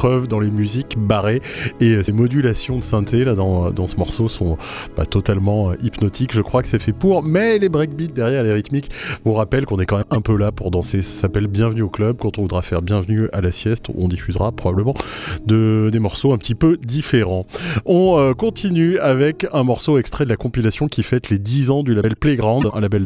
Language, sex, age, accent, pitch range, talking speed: French, male, 30-49, French, 100-125 Hz, 225 wpm